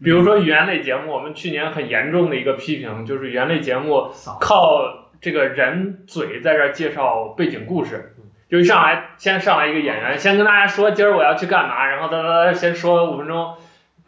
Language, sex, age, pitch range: Chinese, male, 20-39, 135-175 Hz